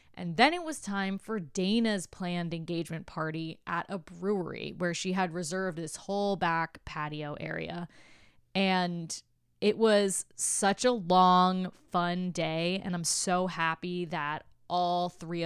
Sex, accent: female, American